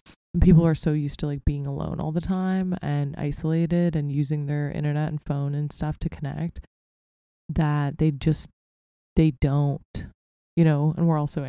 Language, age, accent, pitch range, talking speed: English, 20-39, American, 145-170 Hz, 180 wpm